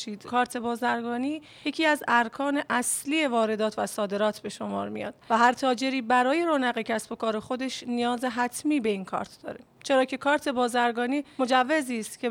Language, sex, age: Persian, female, 30-49